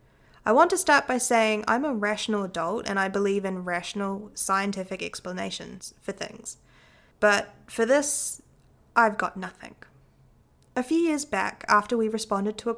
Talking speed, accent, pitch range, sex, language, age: 160 wpm, Australian, 185-225 Hz, female, English, 20-39